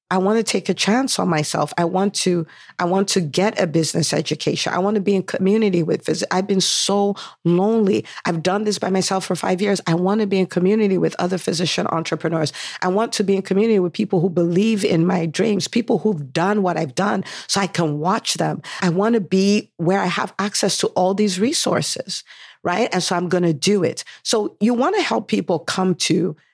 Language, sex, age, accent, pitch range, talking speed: English, female, 50-69, American, 165-200 Hz, 225 wpm